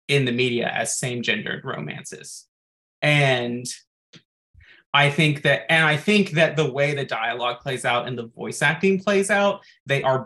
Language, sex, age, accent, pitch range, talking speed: English, male, 20-39, American, 120-150 Hz, 170 wpm